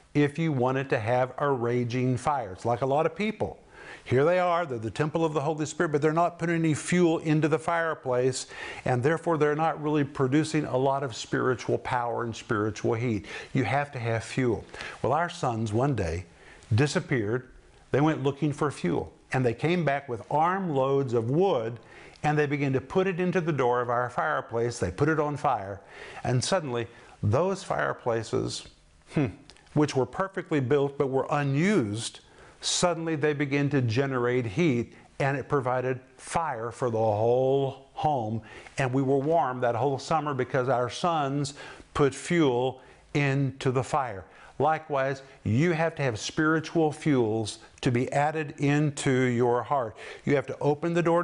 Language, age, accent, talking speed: English, 50-69, American, 175 wpm